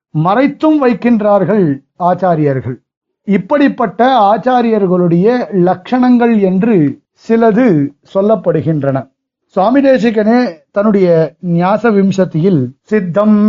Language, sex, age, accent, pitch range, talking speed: Tamil, male, 50-69, native, 170-215 Hz, 60 wpm